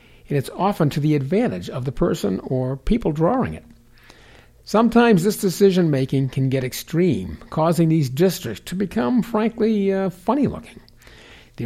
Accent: American